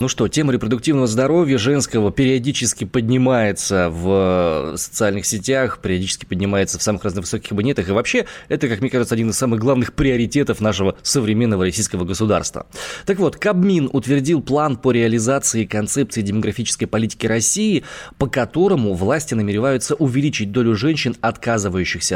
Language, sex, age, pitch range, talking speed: Russian, male, 20-39, 105-135 Hz, 140 wpm